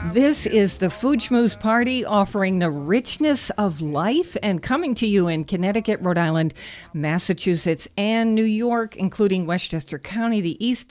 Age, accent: 60-79, American